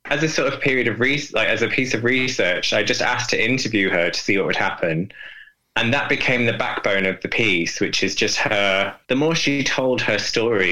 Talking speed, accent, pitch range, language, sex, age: 235 wpm, British, 100-135 Hz, English, male, 20-39